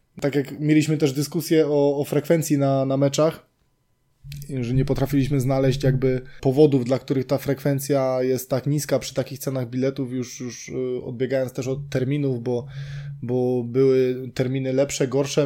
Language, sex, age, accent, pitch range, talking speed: Polish, male, 20-39, native, 135-155 Hz, 155 wpm